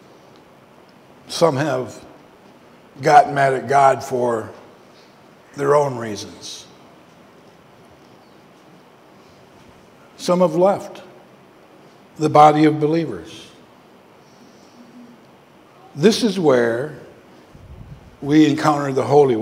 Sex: male